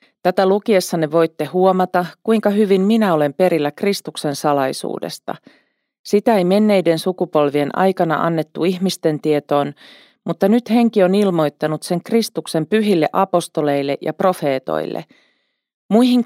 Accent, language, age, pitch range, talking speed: native, Finnish, 40-59, 155-200 Hz, 115 wpm